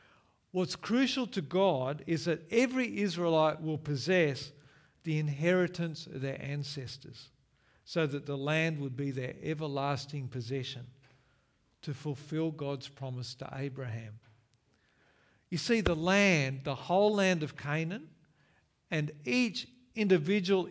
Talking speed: 120 wpm